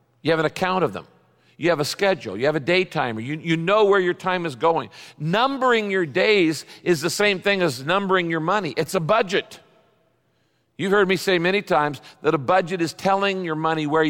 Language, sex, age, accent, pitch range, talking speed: English, male, 50-69, American, 145-190 Hz, 215 wpm